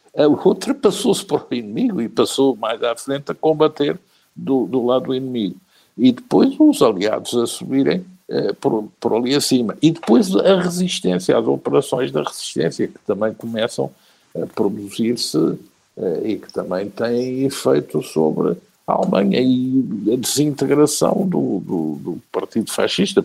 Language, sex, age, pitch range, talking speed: Portuguese, male, 60-79, 110-180 Hz, 150 wpm